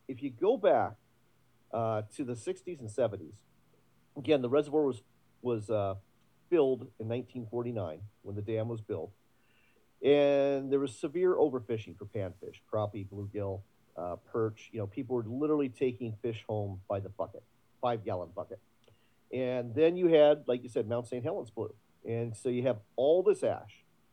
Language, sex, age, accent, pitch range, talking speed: English, male, 40-59, American, 105-125 Hz, 165 wpm